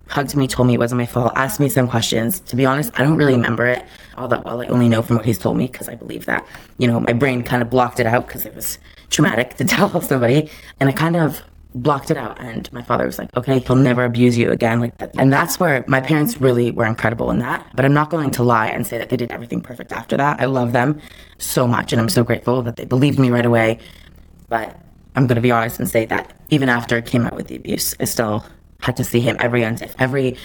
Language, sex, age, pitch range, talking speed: English, female, 20-39, 115-135 Hz, 270 wpm